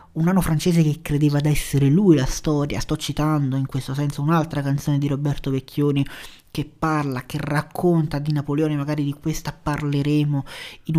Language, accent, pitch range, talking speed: Italian, native, 145-165 Hz, 170 wpm